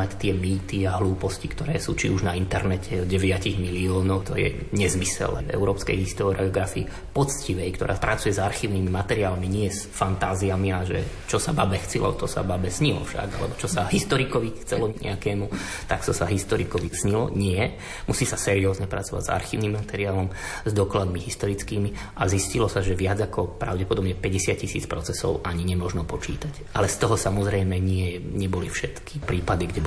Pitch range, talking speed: 90-100 Hz, 165 wpm